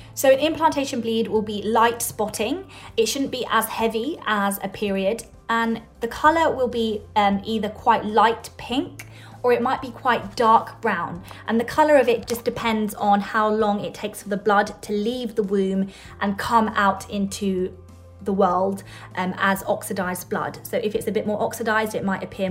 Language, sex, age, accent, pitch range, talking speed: English, female, 20-39, British, 195-230 Hz, 190 wpm